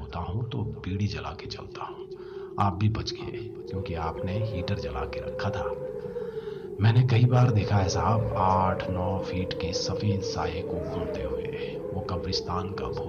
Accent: native